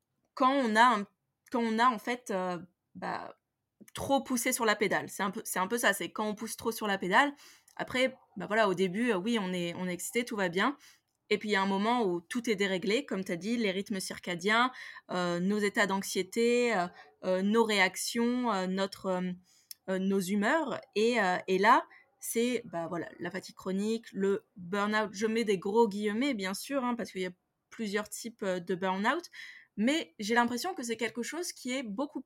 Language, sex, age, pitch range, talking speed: French, female, 20-39, 185-240 Hz, 215 wpm